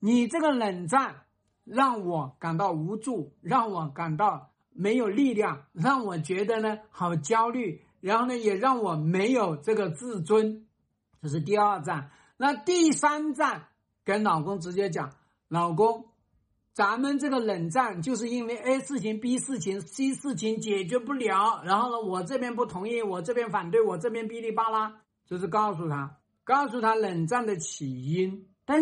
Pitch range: 190-260 Hz